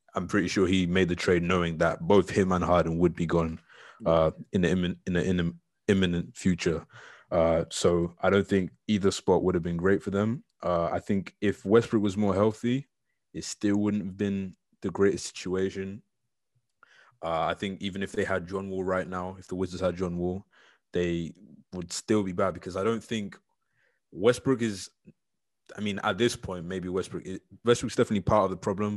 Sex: male